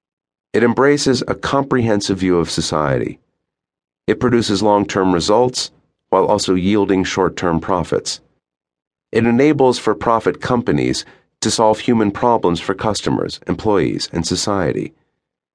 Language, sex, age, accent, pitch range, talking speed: English, male, 40-59, American, 80-110 Hz, 110 wpm